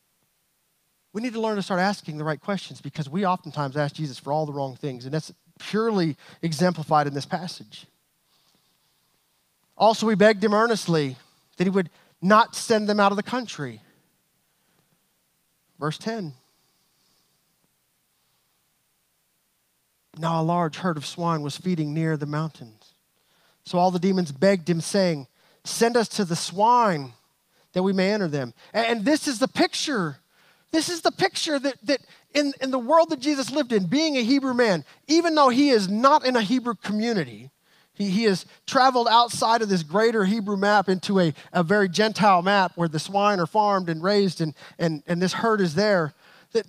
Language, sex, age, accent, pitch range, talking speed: English, male, 20-39, American, 160-220 Hz, 175 wpm